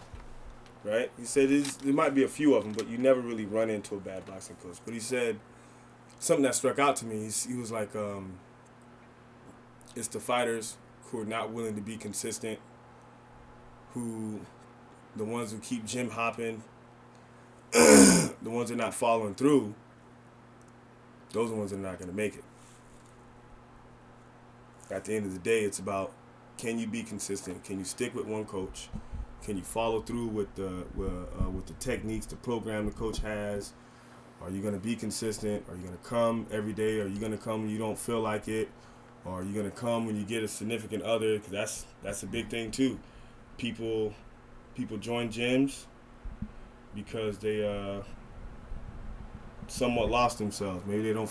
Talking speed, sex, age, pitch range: 175 wpm, male, 20-39, 100-115 Hz